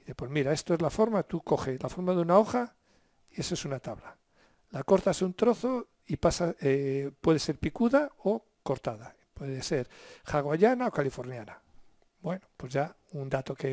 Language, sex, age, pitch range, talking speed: English, male, 60-79, 135-185 Hz, 180 wpm